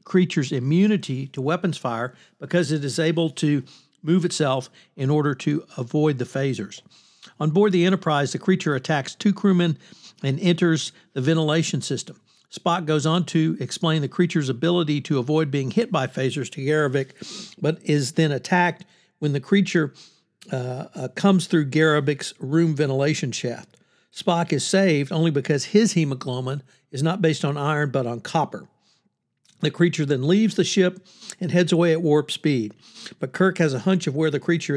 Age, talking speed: 60-79, 170 wpm